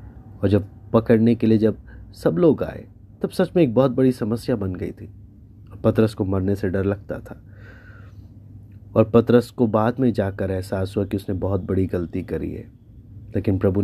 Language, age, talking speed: Hindi, 30-49, 180 wpm